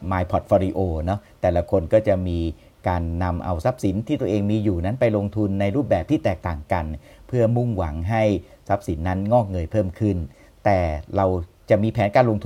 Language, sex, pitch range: Thai, male, 90-110 Hz